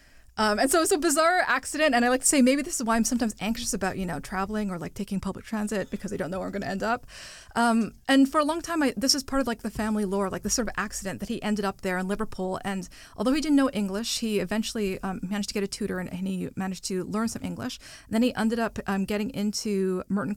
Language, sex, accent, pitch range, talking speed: English, female, American, 190-230 Hz, 280 wpm